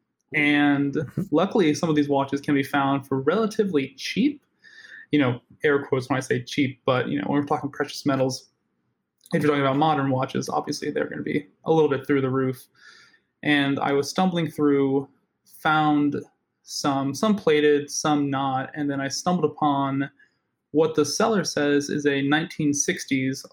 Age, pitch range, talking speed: 20-39, 135-150 Hz, 175 wpm